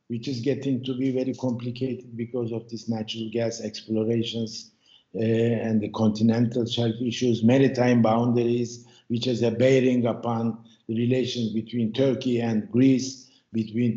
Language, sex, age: English, male, 60-79